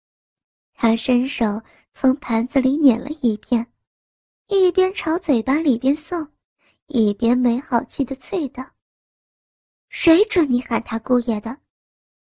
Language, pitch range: Chinese, 245-345 Hz